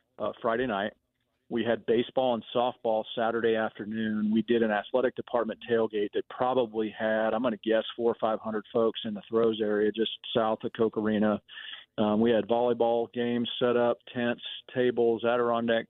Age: 40-59